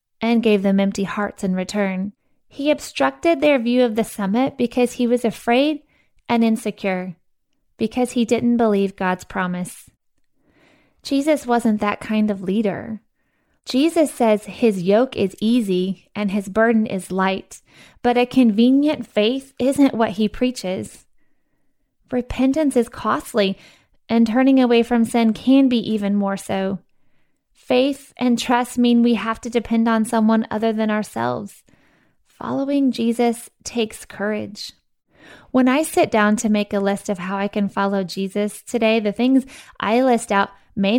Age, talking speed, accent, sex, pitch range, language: 20-39, 150 wpm, American, female, 200-250 Hz, English